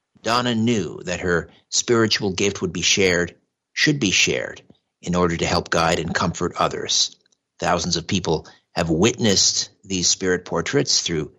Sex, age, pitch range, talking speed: male, 50-69, 90-115 Hz, 155 wpm